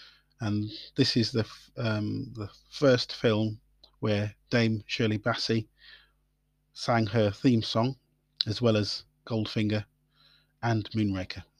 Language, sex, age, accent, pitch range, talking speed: English, male, 30-49, British, 105-130 Hz, 115 wpm